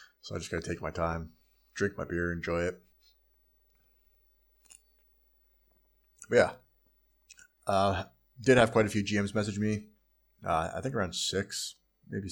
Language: English